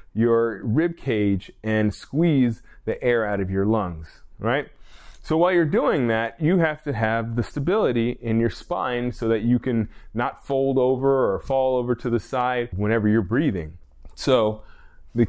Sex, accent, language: male, American, English